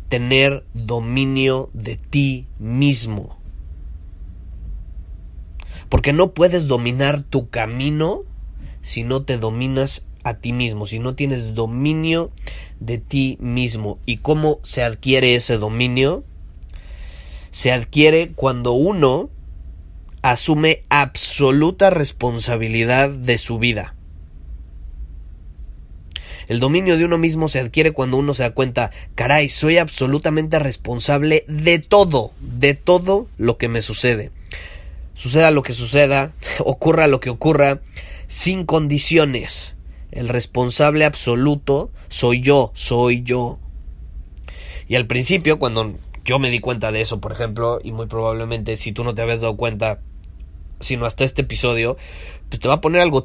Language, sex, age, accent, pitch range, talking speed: Spanish, male, 30-49, Mexican, 85-140 Hz, 130 wpm